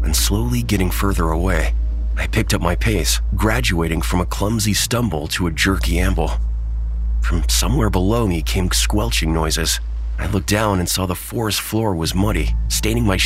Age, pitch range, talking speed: 30-49, 65-100 Hz, 170 wpm